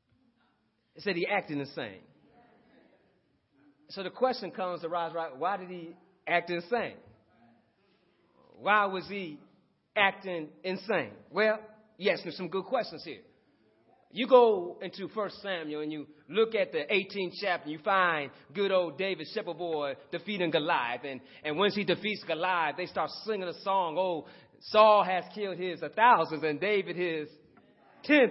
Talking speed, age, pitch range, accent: 150 wpm, 30-49, 165-225 Hz, American